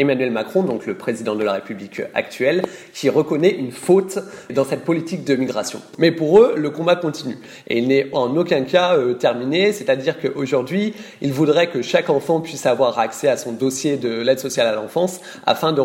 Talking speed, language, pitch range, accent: 195 wpm, French, 130-175 Hz, French